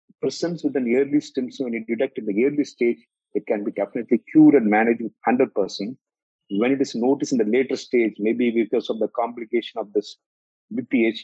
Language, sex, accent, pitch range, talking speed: English, male, Indian, 115-145 Hz, 200 wpm